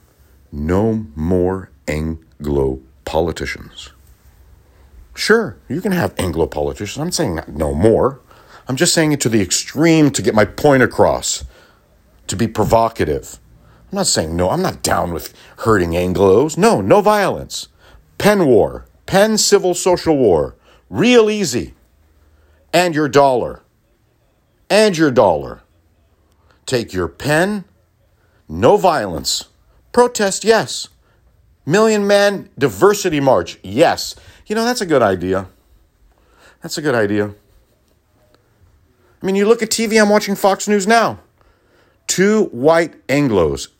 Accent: American